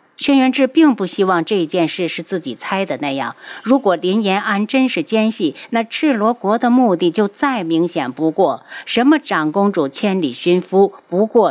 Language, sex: Chinese, female